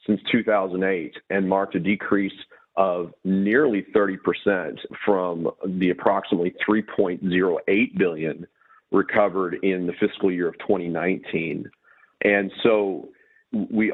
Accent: American